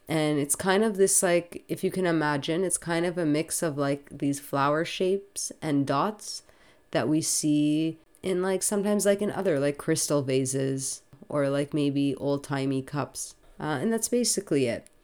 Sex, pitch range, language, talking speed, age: female, 140-170 Hz, English, 175 wpm, 30-49